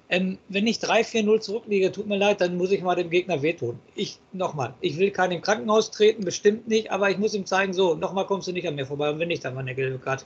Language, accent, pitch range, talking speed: German, German, 180-220 Hz, 270 wpm